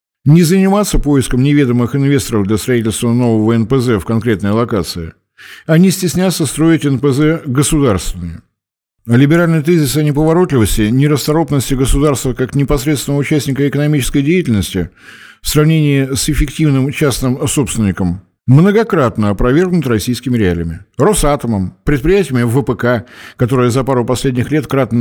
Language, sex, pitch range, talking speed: Russian, male, 115-145 Hz, 120 wpm